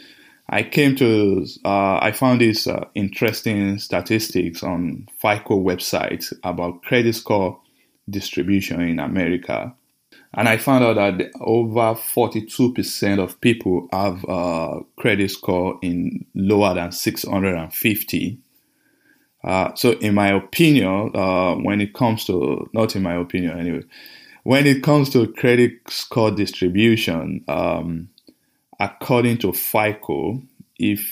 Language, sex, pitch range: English, male, 95-125 Hz